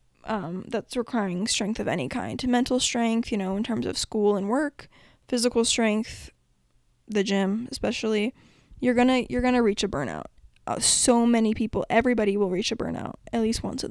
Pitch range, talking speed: 205-235 Hz, 185 wpm